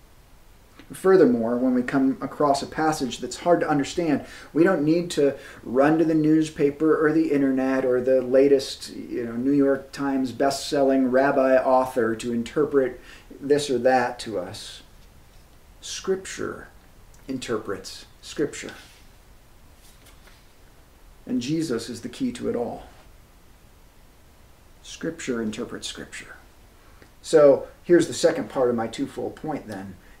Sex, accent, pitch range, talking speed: male, American, 120-140 Hz, 125 wpm